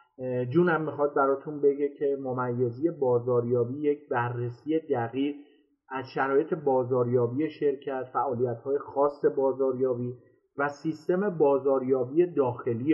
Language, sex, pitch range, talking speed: Persian, male, 135-170 Hz, 95 wpm